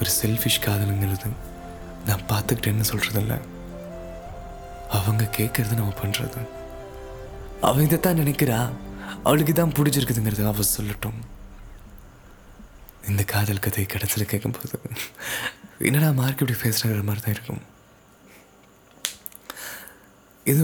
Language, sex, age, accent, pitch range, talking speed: Tamil, male, 20-39, native, 100-120 Hz, 95 wpm